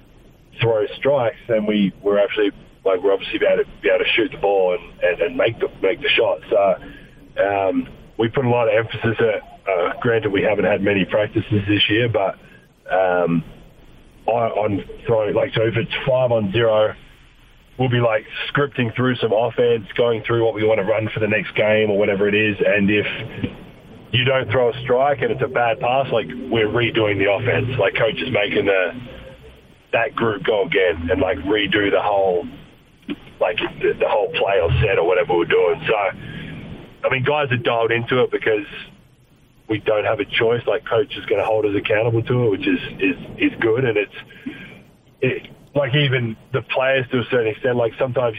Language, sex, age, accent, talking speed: English, male, 20-39, Australian, 195 wpm